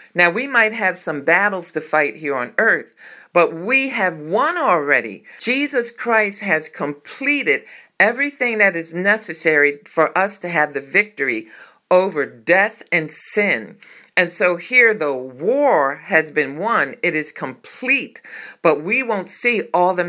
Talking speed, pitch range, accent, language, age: 150 wpm, 160-215 Hz, American, English, 50-69